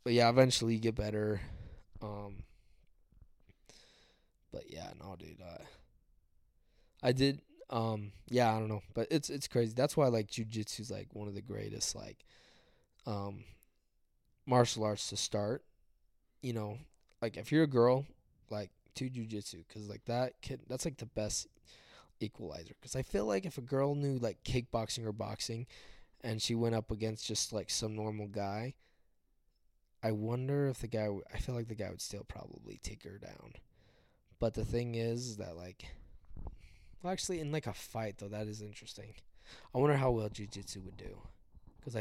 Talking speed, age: 175 wpm, 20-39